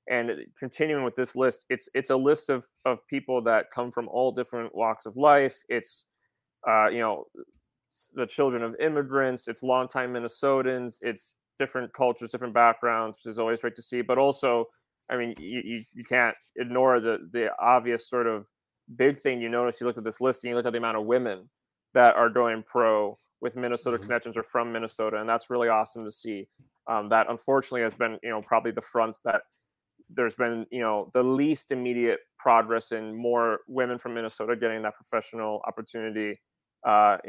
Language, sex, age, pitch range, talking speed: English, male, 20-39, 115-125 Hz, 190 wpm